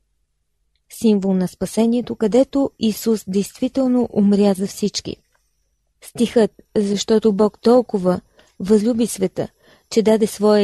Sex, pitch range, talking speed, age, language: female, 195-240 Hz, 100 wpm, 20-39, Bulgarian